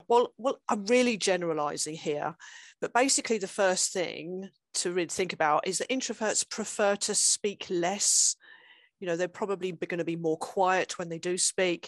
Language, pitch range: English, 170-215 Hz